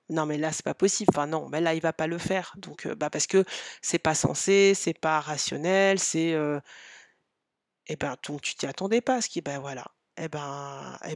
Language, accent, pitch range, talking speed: French, French, 160-195 Hz, 235 wpm